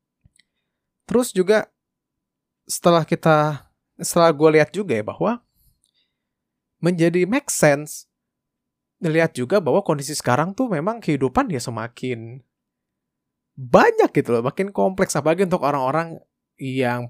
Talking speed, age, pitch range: 115 wpm, 20-39, 125-185 Hz